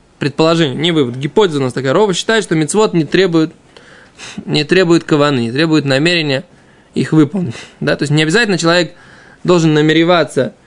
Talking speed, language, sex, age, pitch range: 155 wpm, Russian, male, 20-39, 160-210 Hz